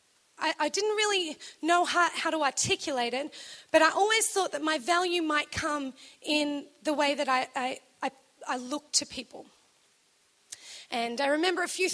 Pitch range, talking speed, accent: 275-325 Hz, 165 wpm, Australian